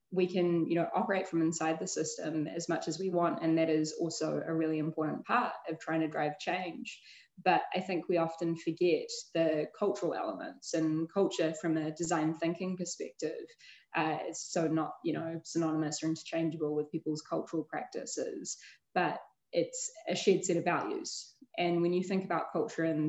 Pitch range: 160-180 Hz